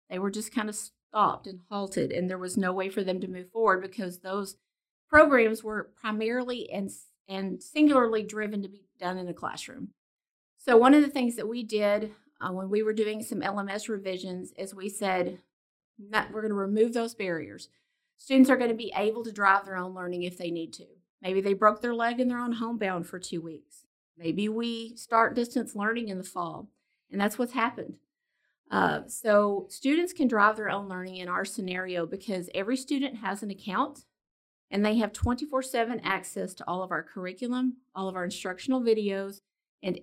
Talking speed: 195 wpm